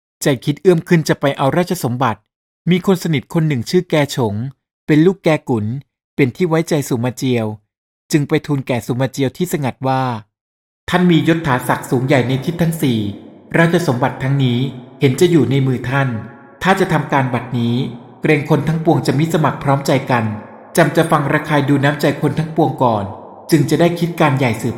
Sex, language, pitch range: male, Thai, 125-165 Hz